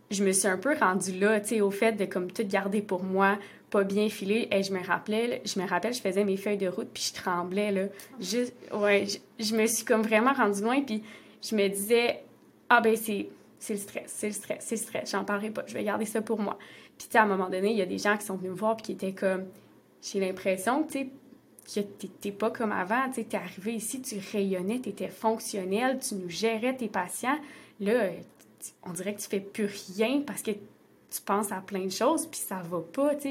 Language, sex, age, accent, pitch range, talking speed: French, female, 20-39, Canadian, 195-225 Hz, 245 wpm